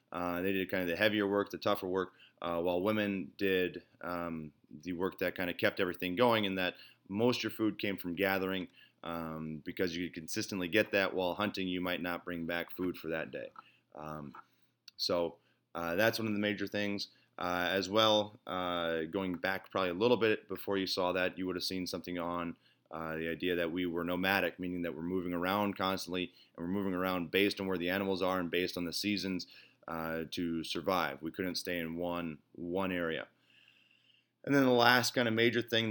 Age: 30-49